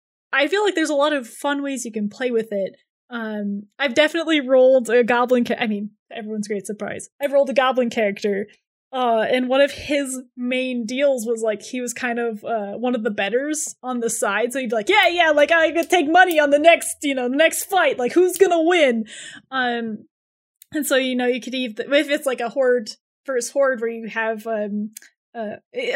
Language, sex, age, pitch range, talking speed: English, female, 20-39, 225-285 Hz, 220 wpm